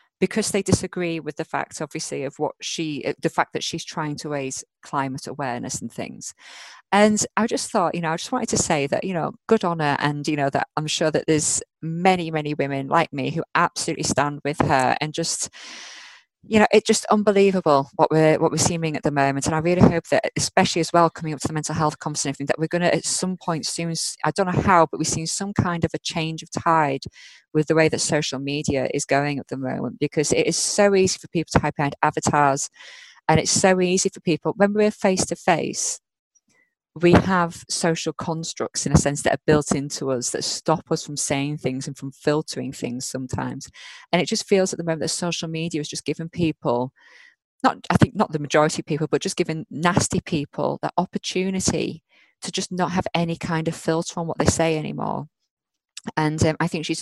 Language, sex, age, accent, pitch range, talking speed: English, female, 20-39, British, 145-175 Hz, 220 wpm